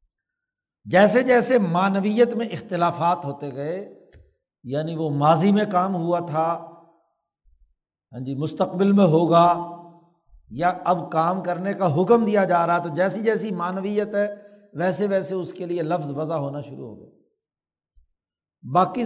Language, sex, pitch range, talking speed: Urdu, male, 145-205 Hz, 140 wpm